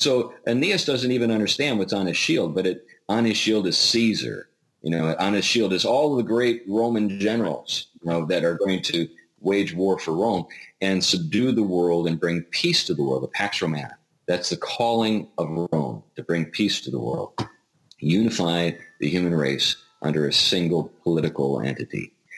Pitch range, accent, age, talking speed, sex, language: 80-110 Hz, American, 40-59, 190 wpm, male, English